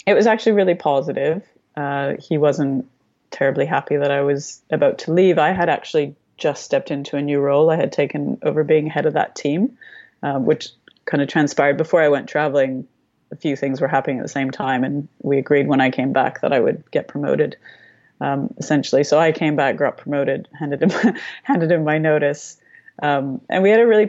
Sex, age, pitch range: female, 30-49, 135-155 Hz